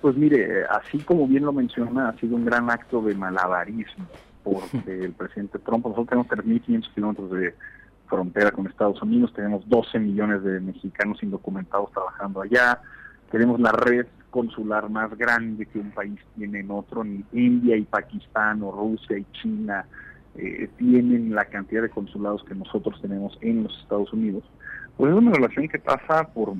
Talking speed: 170 wpm